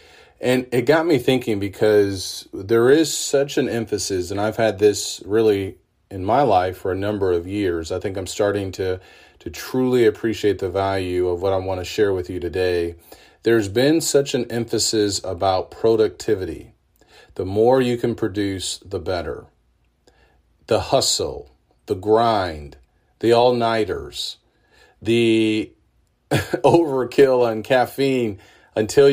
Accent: American